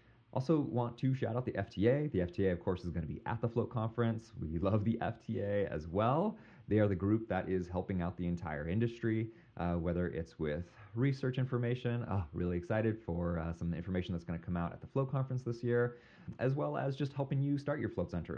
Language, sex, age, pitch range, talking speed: English, male, 30-49, 85-120 Hz, 230 wpm